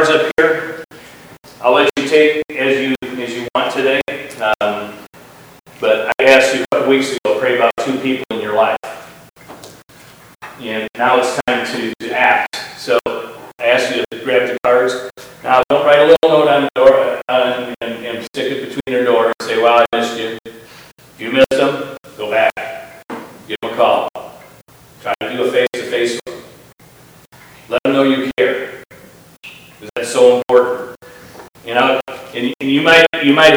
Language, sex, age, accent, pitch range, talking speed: English, male, 40-59, American, 125-150 Hz, 175 wpm